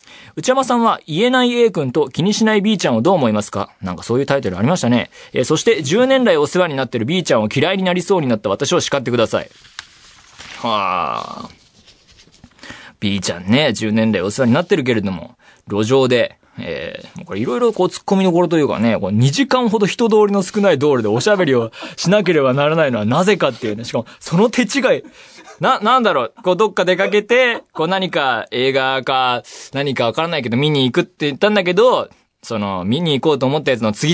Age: 20-39